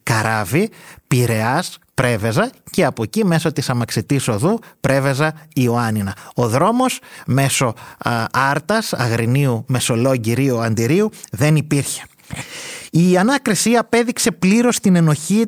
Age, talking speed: 30-49, 110 wpm